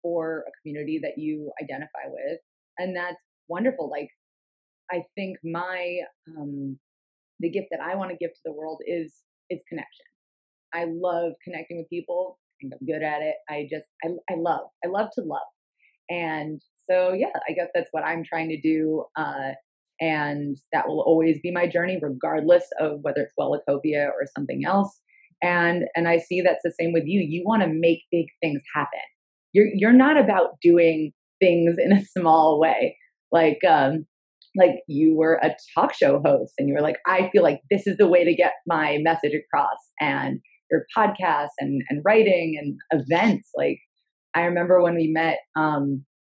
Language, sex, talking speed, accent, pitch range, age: English, female, 185 wpm, American, 155-190 Hz, 30-49